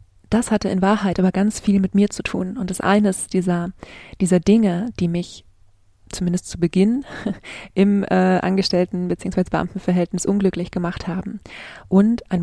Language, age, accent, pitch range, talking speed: German, 20-39, German, 180-200 Hz, 155 wpm